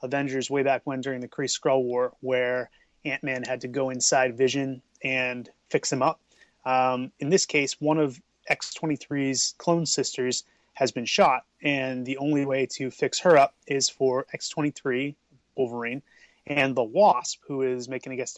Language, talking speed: English, 165 wpm